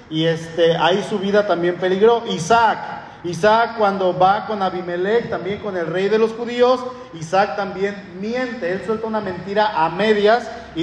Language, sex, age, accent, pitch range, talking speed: Spanish, male, 40-59, Mexican, 180-220 Hz, 165 wpm